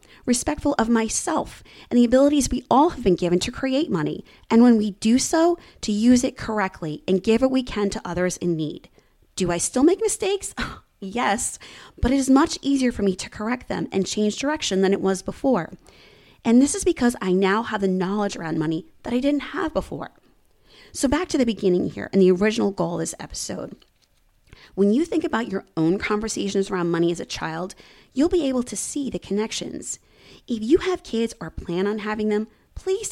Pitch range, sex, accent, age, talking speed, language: 185-270 Hz, female, American, 20-39, 205 wpm, English